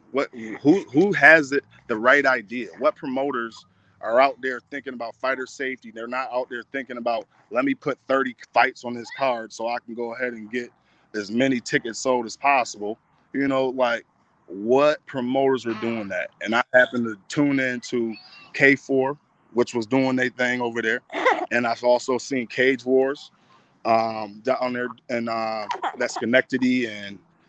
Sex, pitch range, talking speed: male, 120-135 Hz, 180 wpm